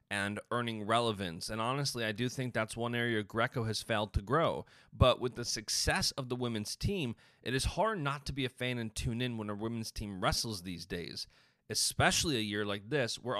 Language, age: English, 30-49